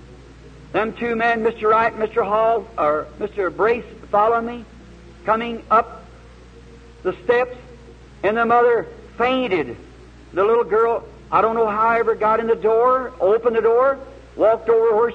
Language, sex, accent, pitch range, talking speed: English, male, American, 230-250 Hz, 160 wpm